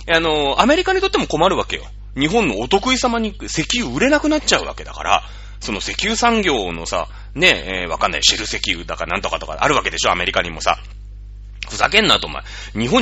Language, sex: Japanese, male